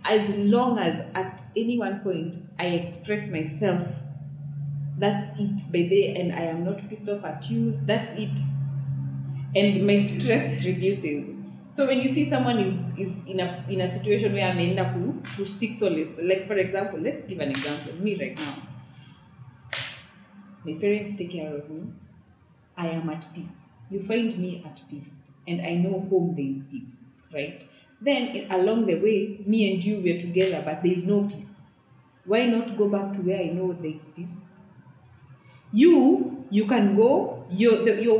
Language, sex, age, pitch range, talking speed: Swahili, female, 30-49, 160-205 Hz, 175 wpm